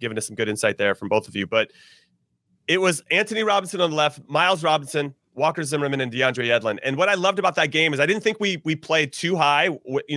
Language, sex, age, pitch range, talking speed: English, male, 30-49, 145-195 Hz, 250 wpm